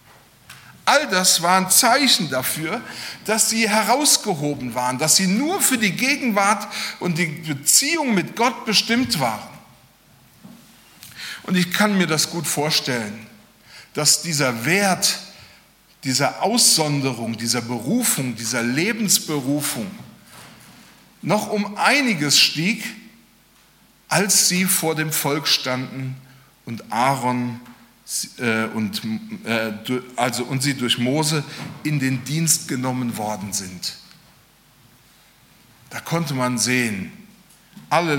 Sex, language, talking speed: male, German, 110 wpm